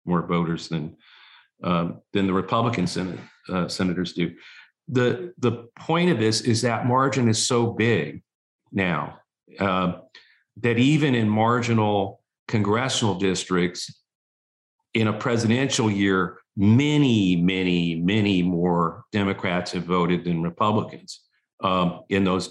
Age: 50-69